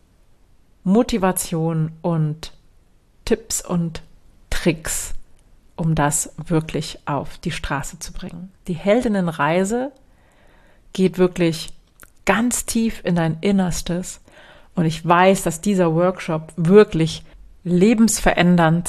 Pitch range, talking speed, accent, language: 160-195 Hz, 95 wpm, German, German